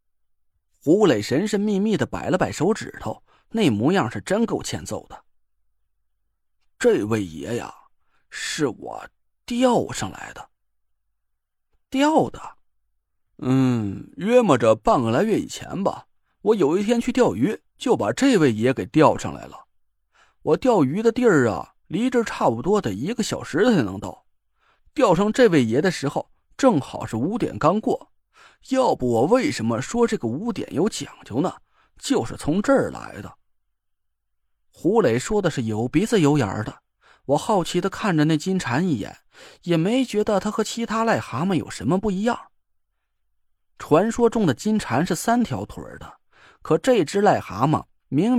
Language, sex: Chinese, male